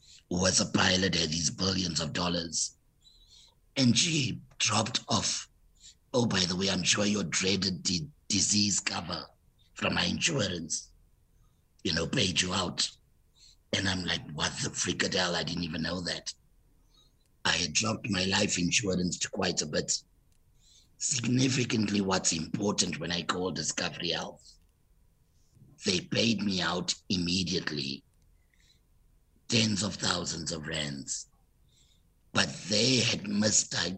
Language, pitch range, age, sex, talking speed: English, 85-105 Hz, 60-79, male, 135 wpm